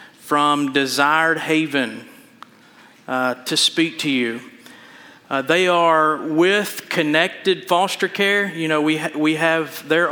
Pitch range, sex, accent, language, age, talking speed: 145-175 Hz, male, American, English, 40-59, 130 wpm